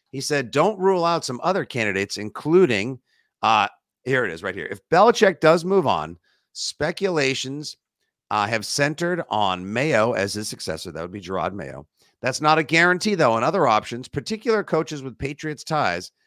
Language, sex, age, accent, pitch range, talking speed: English, male, 50-69, American, 100-150 Hz, 175 wpm